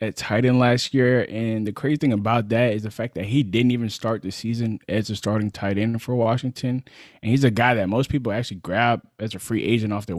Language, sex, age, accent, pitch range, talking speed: English, male, 20-39, American, 100-115 Hz, 255 wpm